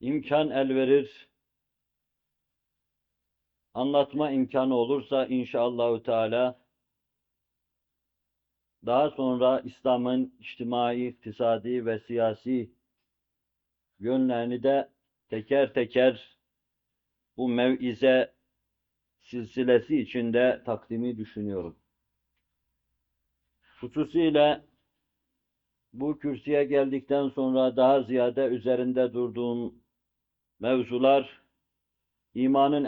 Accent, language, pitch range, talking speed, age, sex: native, Turkish, 100-135 Hz, 65 wpm, 50-69, male